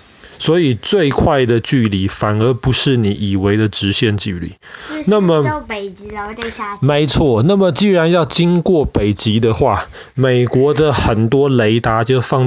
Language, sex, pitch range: Chinese, male, 110-150 Hz